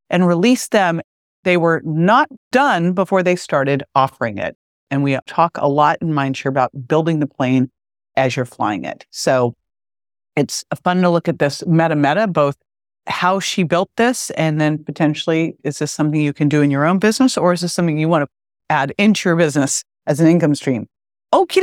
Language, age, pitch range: English, 40-59, 135-190 Hz